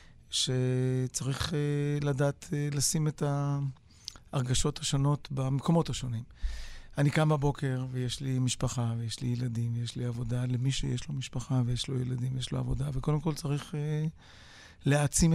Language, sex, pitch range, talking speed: Hebrew, male, 125-140 Hz, 145 wpm